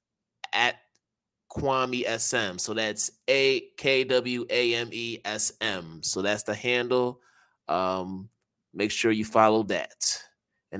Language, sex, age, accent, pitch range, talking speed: English, male, 20-39, American, 110-130 Hz, 95 wpm